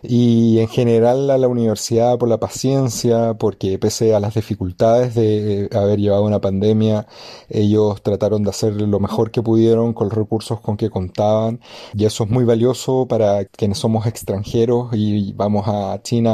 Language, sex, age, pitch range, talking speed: Spanish, male, 30-49, 105-120 Hz, 170 wpm